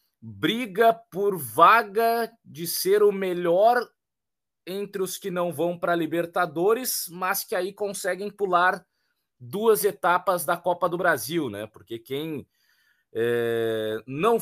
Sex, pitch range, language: male, 135-190 Hz, Portuguese